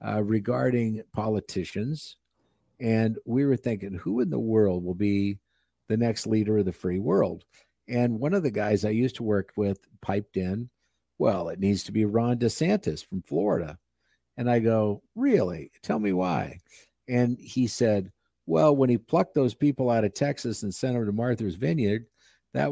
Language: English